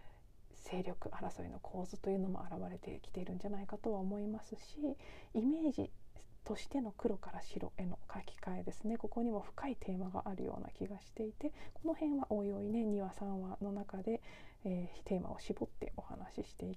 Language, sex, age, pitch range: Japanese, female, 40-59, 185-235 Hz